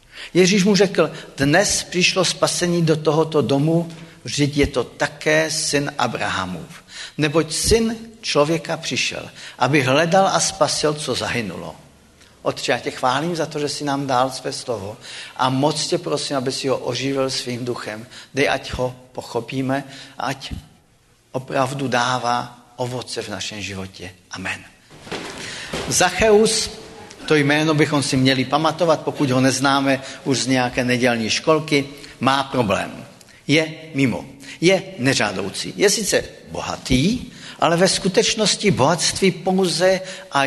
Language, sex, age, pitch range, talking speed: Czech, male, 50-69, 130-160 Hz, 130 wpm